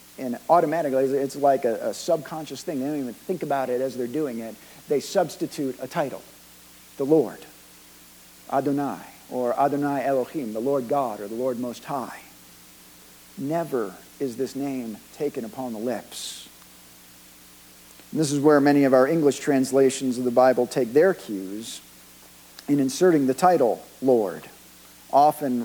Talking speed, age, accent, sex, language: 150 wpm, 50-69, American, male, English